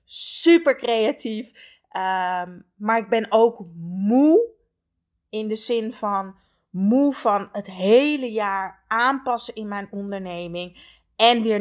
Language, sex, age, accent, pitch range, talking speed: Dutch, female, 30-49, Dutch, 195-260 Hz, 115 wpm